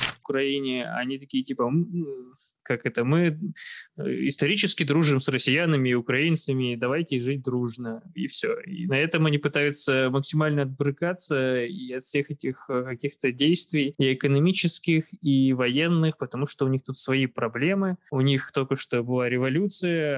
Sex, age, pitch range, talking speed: male, 20-39, 130-155 Hz, 145 wpm